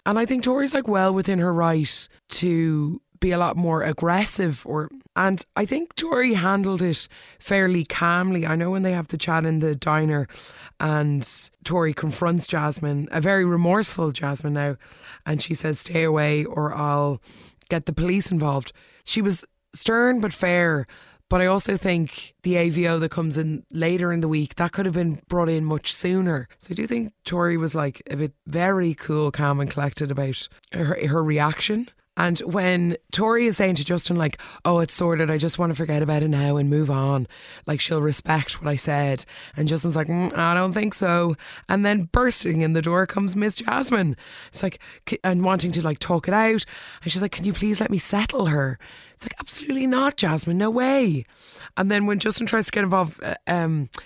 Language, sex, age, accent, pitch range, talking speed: English, female, 20-39, Irish, 155-195 Hz, 200 wpm